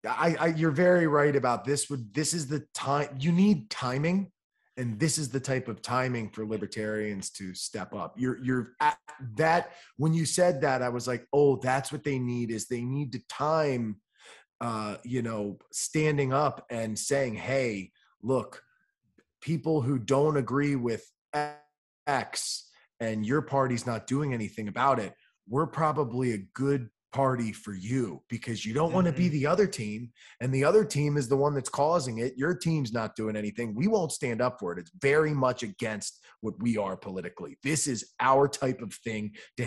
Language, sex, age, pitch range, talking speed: English, male, 30-49, 120-155 Hz, 185 wpm